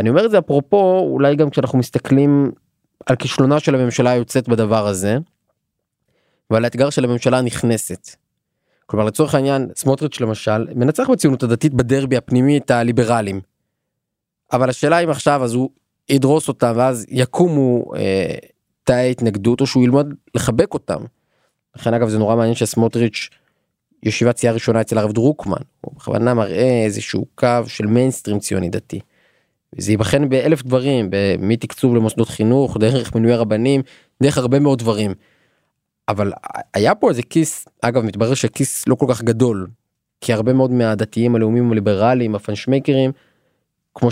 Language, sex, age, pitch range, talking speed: Hebrew, male, 20-39, 115-140 Hz, 140 wpm